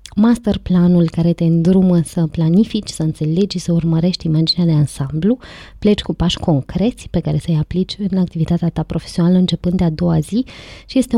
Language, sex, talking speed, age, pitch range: Romanian, female, 175 wpm, 20-39, 170-205 Hz